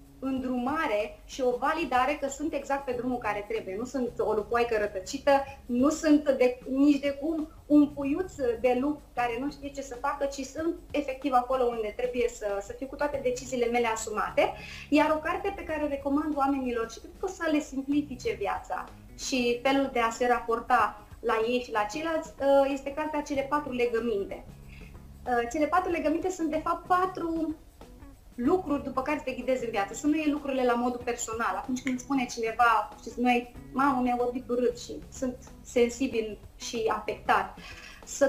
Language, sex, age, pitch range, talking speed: Romanian, female, 20-39, 235-285 Hz, 180 wpm